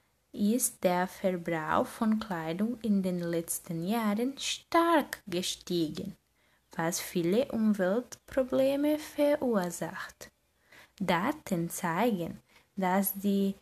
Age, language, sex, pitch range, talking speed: 20-39, German, female, 185-255 Hz, 85 wpm